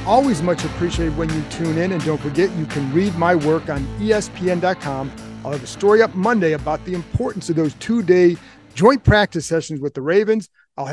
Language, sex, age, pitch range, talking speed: English, male, 40-59, 155-185 Hz, 200 wpm